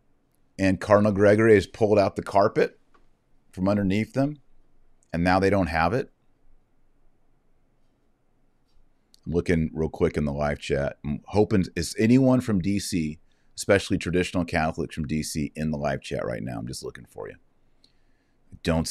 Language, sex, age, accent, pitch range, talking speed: English, male, 40-59, American, 80-105 Hz, 150 wpm